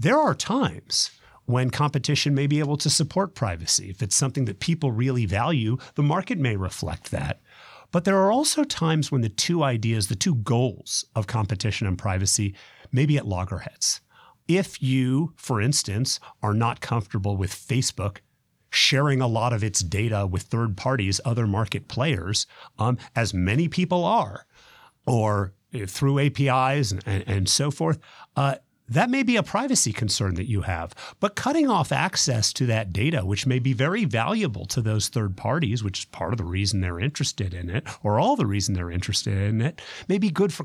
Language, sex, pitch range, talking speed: English, male, 105-150 Hz, 185 wpm